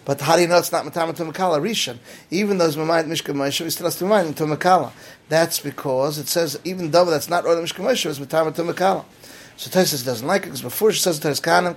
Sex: male